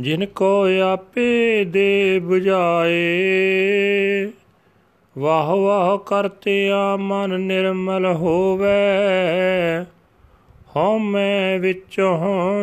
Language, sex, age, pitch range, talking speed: Punjabi, male, 40-59, 185-200 Hz, 65 wpm